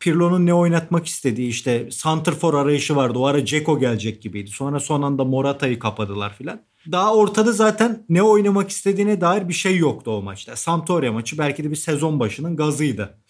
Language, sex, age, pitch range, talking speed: Turkish, male, 40-59, 140-195 Hz, 175 wpm